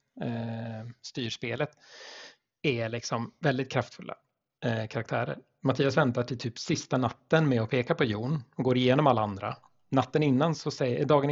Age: 30-49